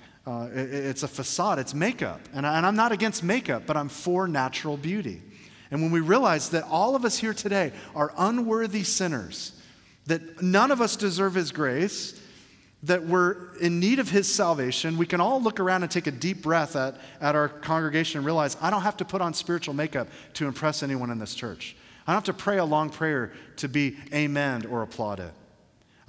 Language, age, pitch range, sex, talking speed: English, 40-59, 130-175 Hz, male, 200 wpm